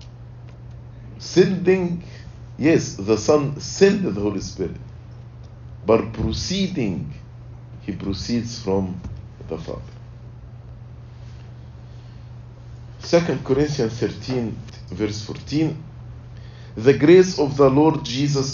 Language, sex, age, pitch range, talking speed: English, male, 50-69, 115-130 Hz, 85 wpm